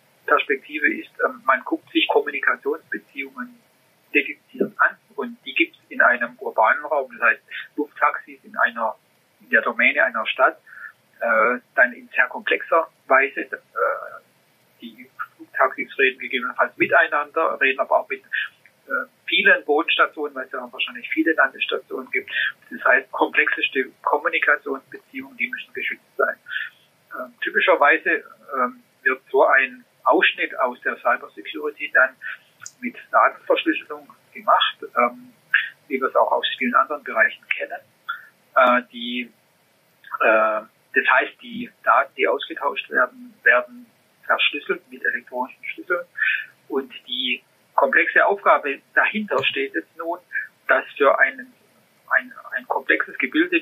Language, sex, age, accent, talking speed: German, male, 40-59, German, 130 wpm